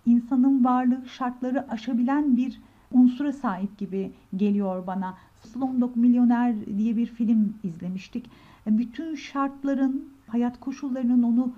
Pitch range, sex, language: 215-255 Hz, female, Turkish